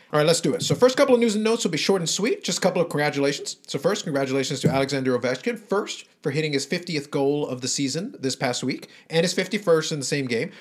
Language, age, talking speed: English, 40-59, 265 wpm